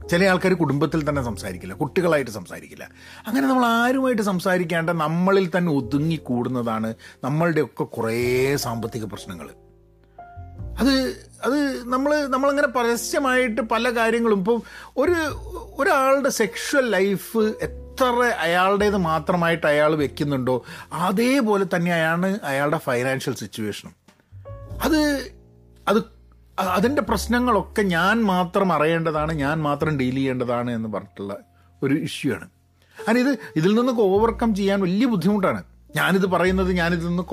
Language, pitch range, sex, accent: Malayalam, 140-220 Hz, male, native